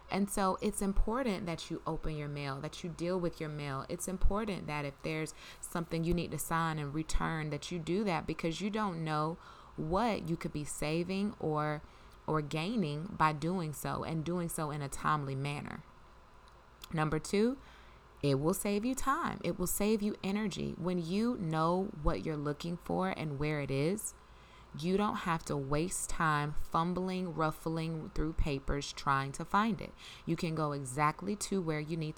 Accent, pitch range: American, 150-185 Hz